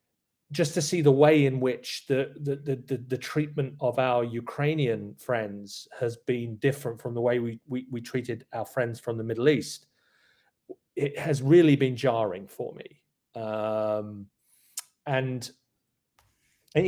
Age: 30-49